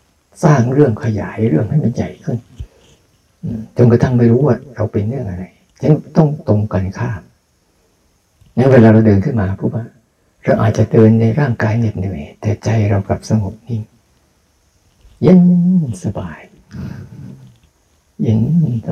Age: 60-79